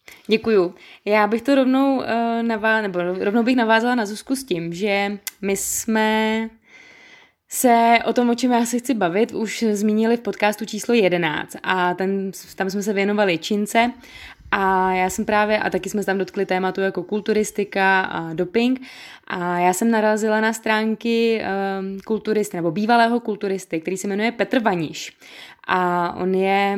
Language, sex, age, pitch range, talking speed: Czech, female, 20-39, 190-215 Hz, 160 wpm